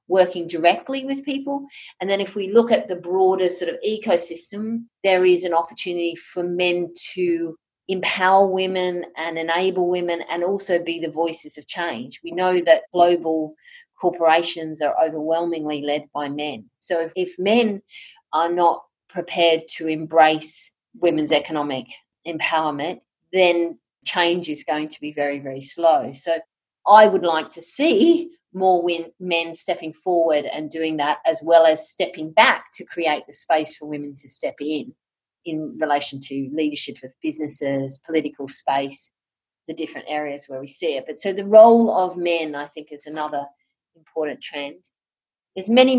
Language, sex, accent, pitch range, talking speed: English, female, Australian, 155-185 Hz, 160 wpm